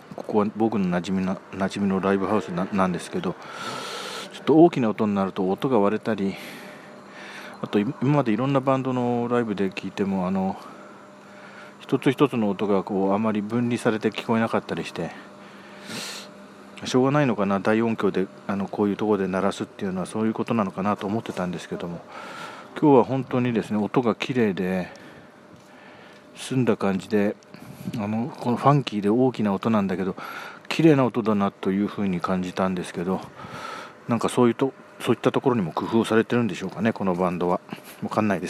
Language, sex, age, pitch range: Japanese, male, 40-59, 100-125 Hz